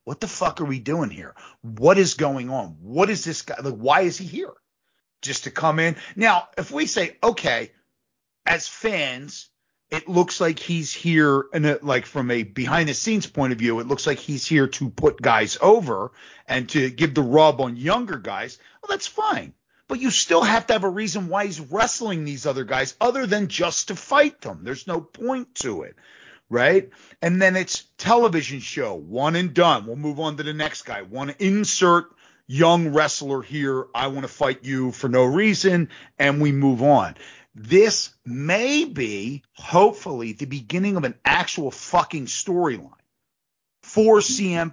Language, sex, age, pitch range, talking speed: English, male, 40-59, 135-190 Hz, 180 wpm